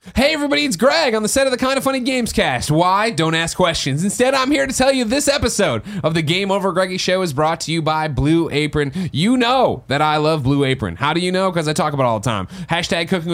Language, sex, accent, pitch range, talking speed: English, male, American, 125-180 Hz, 265 wpm